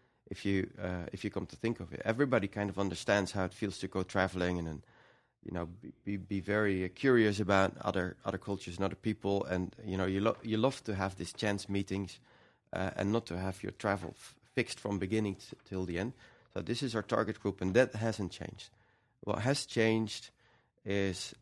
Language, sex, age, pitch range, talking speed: English, male, 30-49, 95-115 Hz, 215 wpm